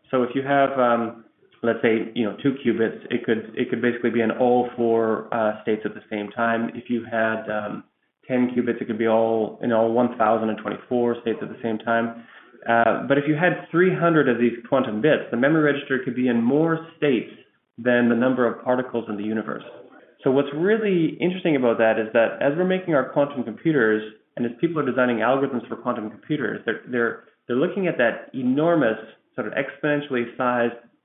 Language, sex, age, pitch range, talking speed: English, male, 30-49, 115-140 Hz, 215 wpm